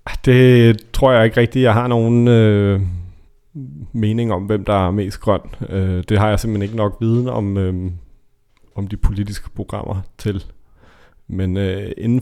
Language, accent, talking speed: Danish, native, 165 wpm